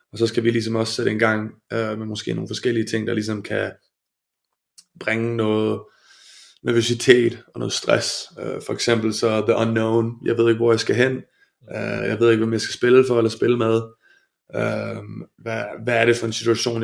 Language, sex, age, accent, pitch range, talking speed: Danish, male, 20-39, native, 110-120 Hz, 205 wpm